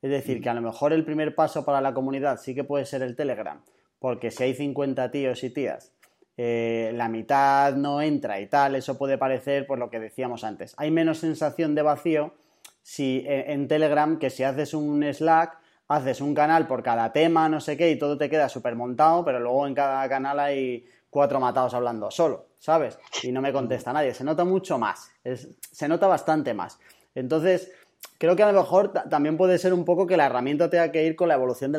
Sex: male